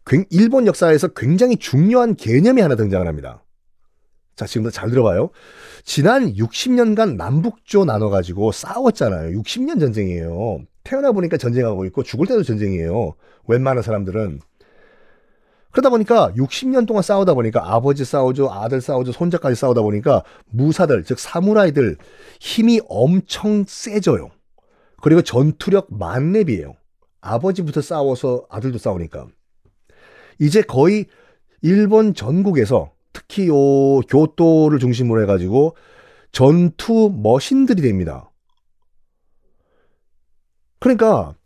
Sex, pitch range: male, 130-215 Hz